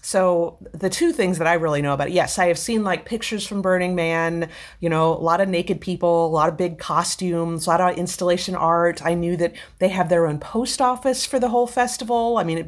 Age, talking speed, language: 30-49, 245 wpm, English